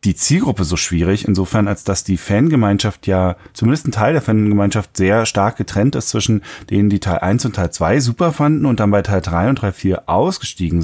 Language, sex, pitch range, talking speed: German, male, 95-120 Hz, 210 wpm